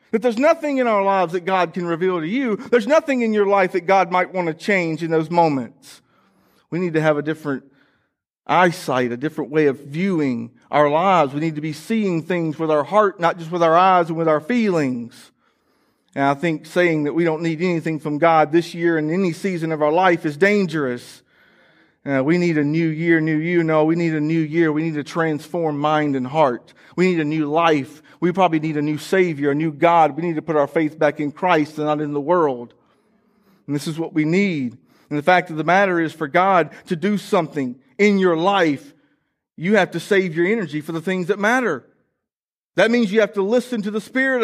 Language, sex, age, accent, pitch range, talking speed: English, male, 40-59, American, 155-195 Hz, 225 wpm